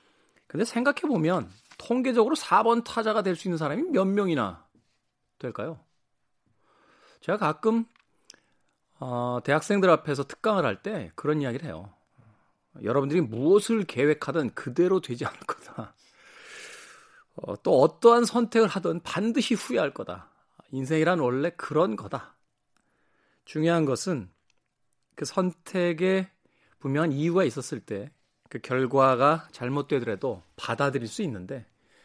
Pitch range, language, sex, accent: 125-190 Hz, Korean, male, native